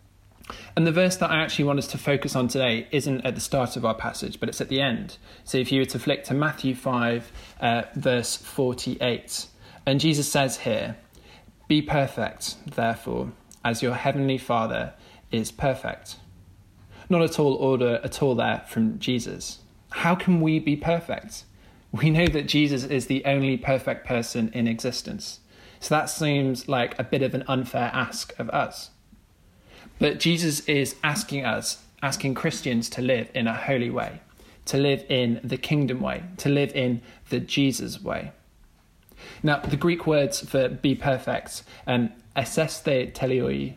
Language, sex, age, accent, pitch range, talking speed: English, male, 20-39, British, 120-145 Hz, 165 wpm